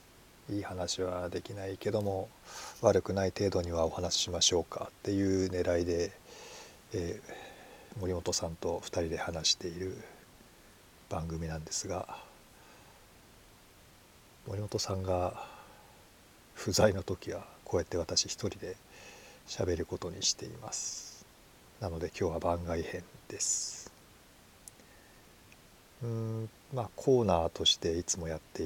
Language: Japanese